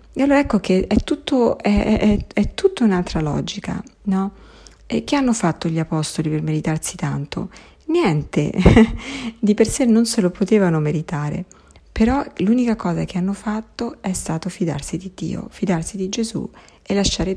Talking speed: 160 wpm